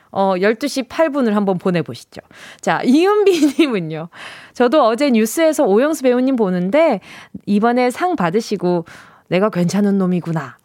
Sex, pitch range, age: female, 200-310 Hz, 20-39